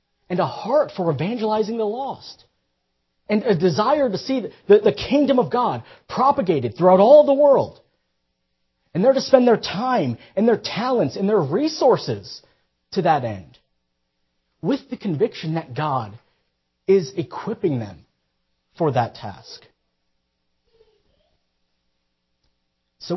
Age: 40-59